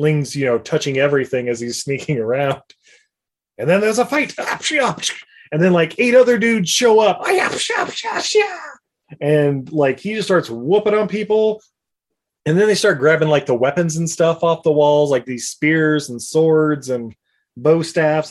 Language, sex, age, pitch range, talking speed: English, male, 20-39, 140-180 Hz, 165 wpm